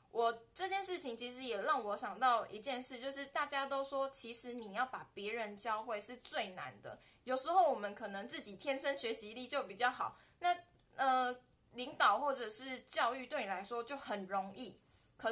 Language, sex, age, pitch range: Chinese, female, 20-39, 205-265 Hz